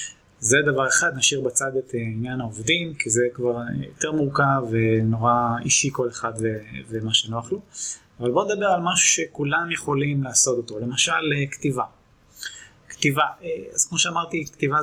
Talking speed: 150 wpm